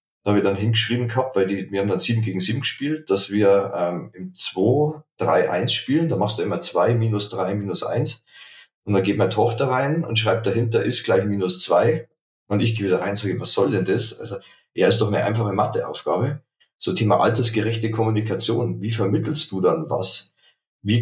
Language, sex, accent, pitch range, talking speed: German, male, German, 100-120 Hz, 210 wpm